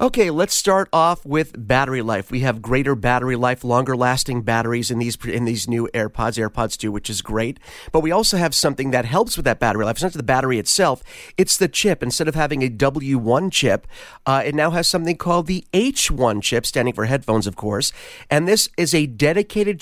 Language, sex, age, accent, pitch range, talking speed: English, male, 30-49, American, 125-155 Hz, 210 wpm